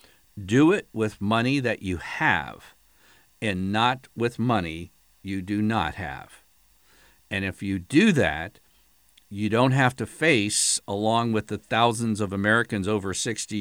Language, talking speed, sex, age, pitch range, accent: English, 145 wpm, male, 50-69, 95-125 Hz, American